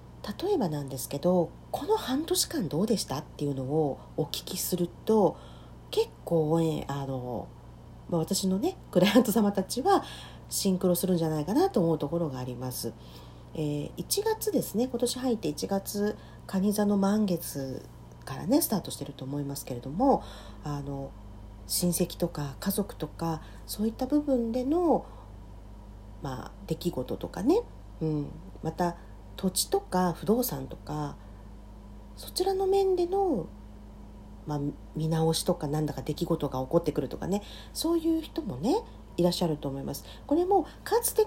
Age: 40-59